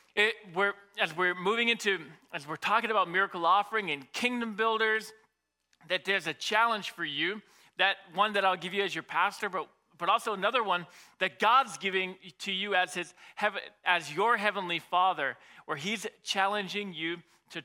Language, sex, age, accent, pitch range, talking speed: English, male, 40-59, American, 170-205 Hz, 175 wpm